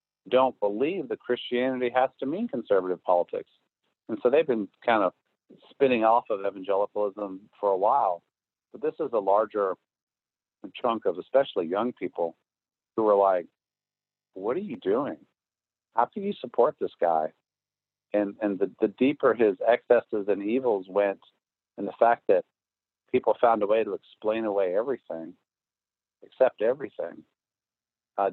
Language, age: English, 50-69